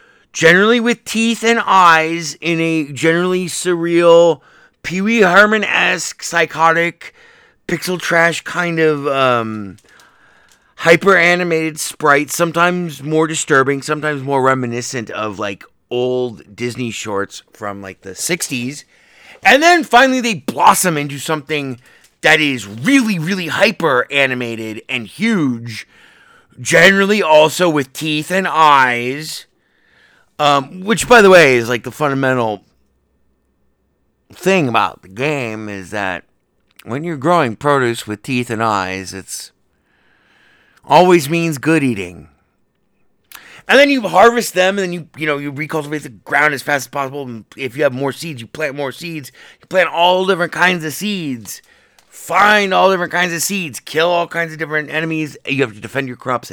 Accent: American